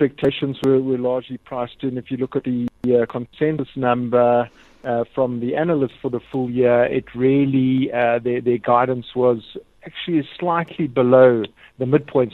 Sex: male